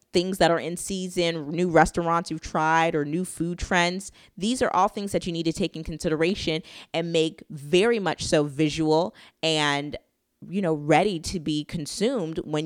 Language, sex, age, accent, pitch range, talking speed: English, female, 20-39, American, 155-200 Hz, 180 wpm